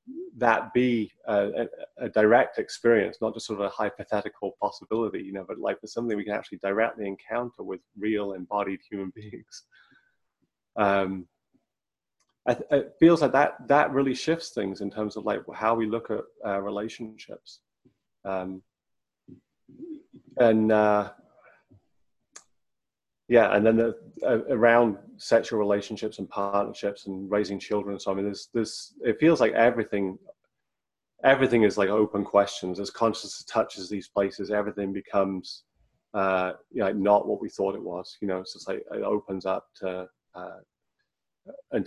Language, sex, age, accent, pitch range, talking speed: English, male, 30-49, British, 100-115 Hz, 150 wpm